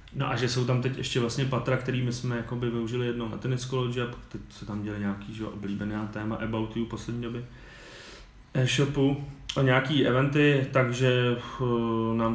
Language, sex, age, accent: Czech, male, 30-49, native